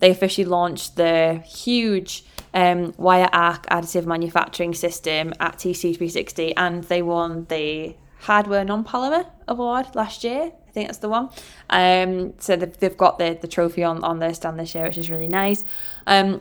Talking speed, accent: 170 wpm, British